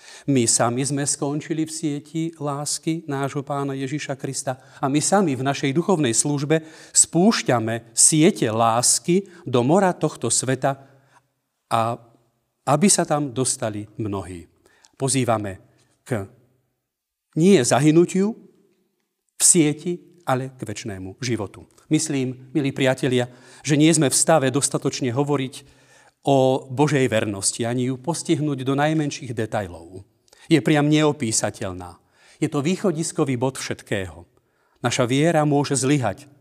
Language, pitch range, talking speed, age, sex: Slovak, 120-155 Hz, 120 wpm, 40-59, male